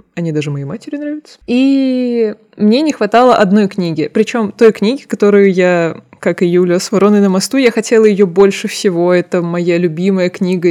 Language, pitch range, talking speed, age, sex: Russian, 185-230 Hz, 180 wpm, 20-39, female